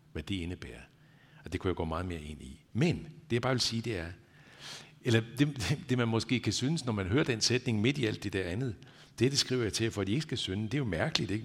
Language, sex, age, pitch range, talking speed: Danish, male, 60-79, 100-145 Hz, 290 wpm